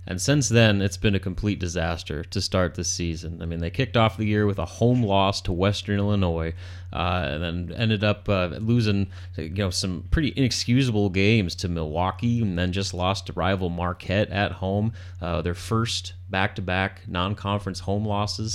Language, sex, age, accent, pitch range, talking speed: English, male, 30-49, American, 90-105 Hz, 185 wpm